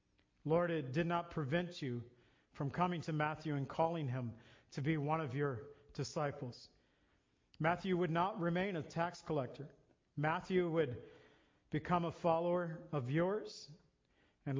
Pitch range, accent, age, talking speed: 145-175 Hz, American, 50-69, 140 wpm